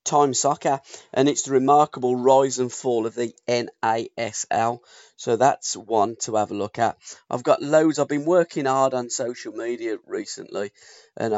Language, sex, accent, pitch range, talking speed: English, male, British, 110-150 Hz, 170 wpm